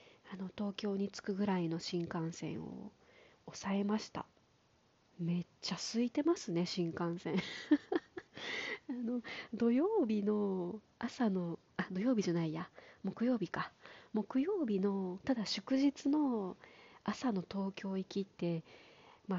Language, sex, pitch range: Japanese, female, 180-250 Hz